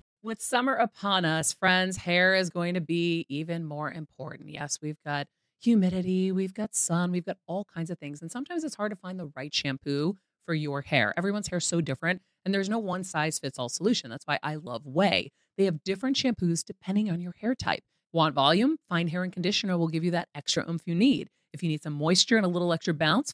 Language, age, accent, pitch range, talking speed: English, 30-49, American, 155-195 Hz, 220 wpm